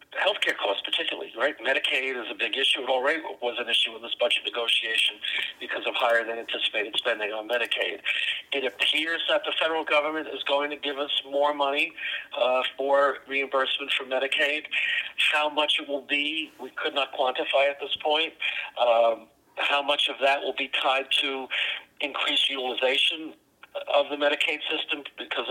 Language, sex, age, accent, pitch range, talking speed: English, male, 50-69, American, 125-145 Hz, 170 wpm